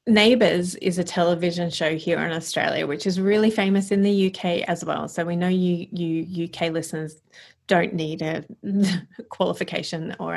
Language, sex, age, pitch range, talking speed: English, female, 30-49, 165-200 Hz, 170 wpm